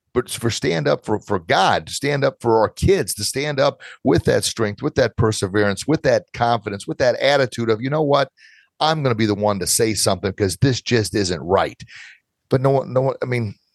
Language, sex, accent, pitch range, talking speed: English, male, American, 95-115 Hz, 230 wpm